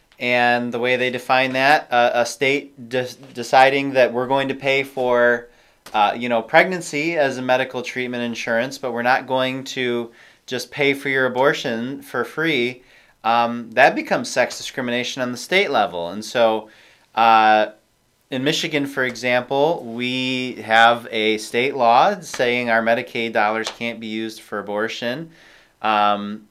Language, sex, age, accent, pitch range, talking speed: English, male, 30-49, American, 115-135 Hz, 155 wpm